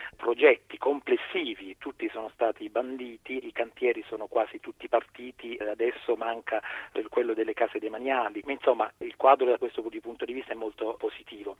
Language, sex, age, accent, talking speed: Italian, male, 40-59, native, 160 wpm